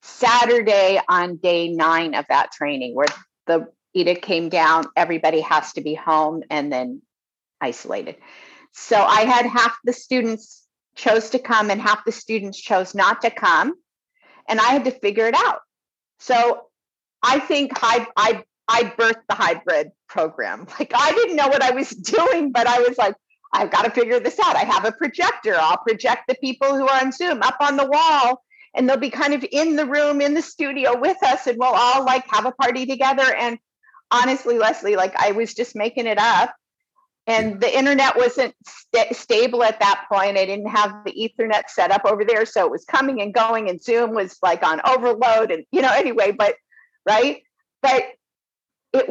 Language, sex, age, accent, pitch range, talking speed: English, female, 50-69, American, 215-275 Hz, 190 wpm